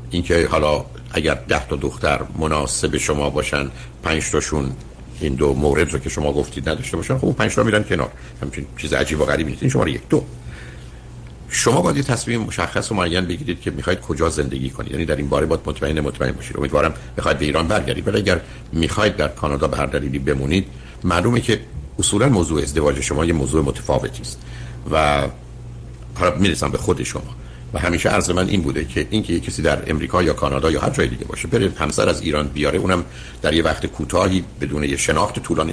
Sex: male